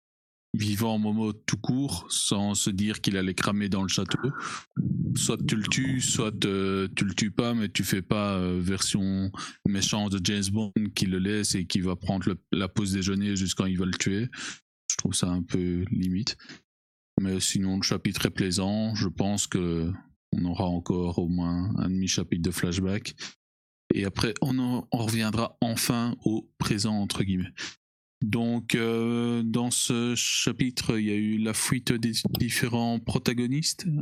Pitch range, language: 95-115 Hz, French